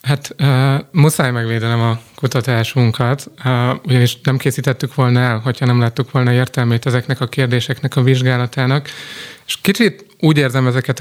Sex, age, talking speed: male, 30-49, 145 wpm